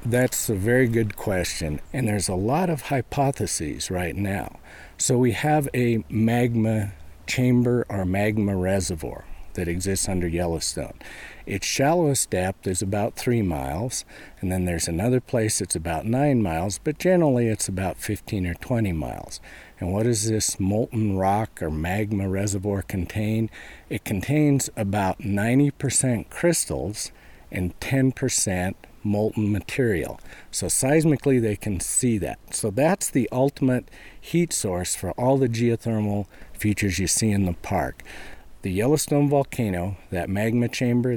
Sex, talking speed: male, 140 wpm